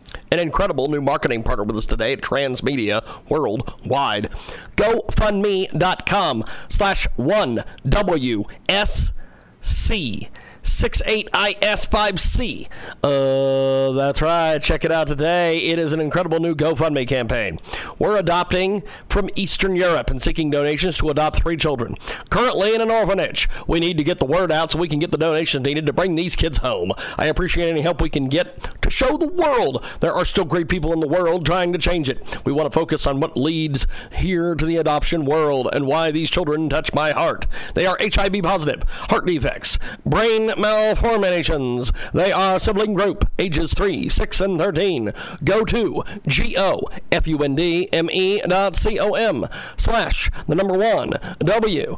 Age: 50-69